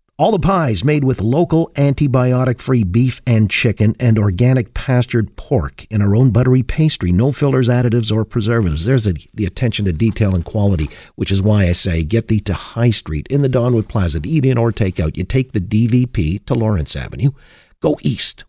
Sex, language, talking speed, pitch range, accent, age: male, English, 195 wpm, 110-140 Hz, American, 50-69